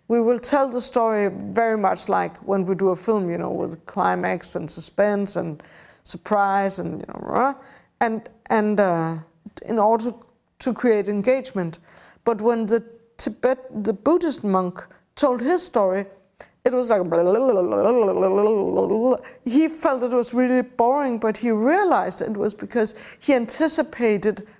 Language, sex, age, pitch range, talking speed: English, female, 50-69, 200-250 Hz, 170 wpm